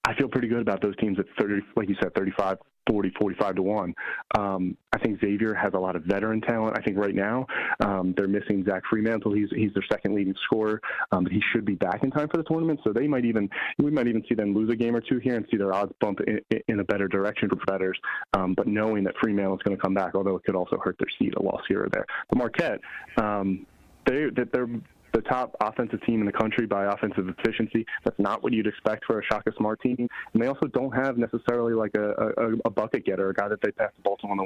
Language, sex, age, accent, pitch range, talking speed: English, male, 30-49, American, 100-115 Hz, 260 wpm